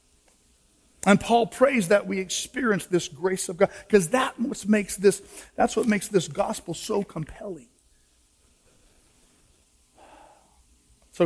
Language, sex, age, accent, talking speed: English, male, 50-69, American, 125 wpm